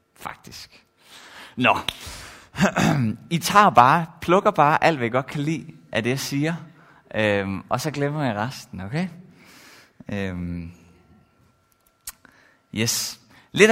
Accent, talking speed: native, 115 wpm